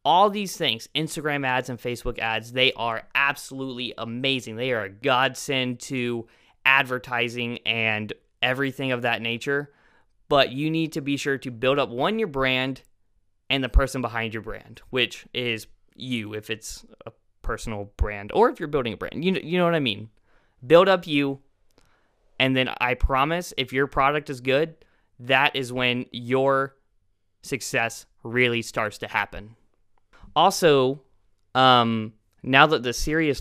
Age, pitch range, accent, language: 20-39, 110-140 Hz, American, English